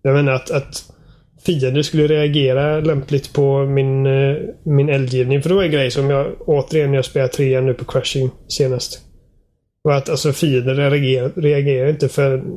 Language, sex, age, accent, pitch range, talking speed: Swedish, male, 20-39, native, 130-145 Hz, 160 wpm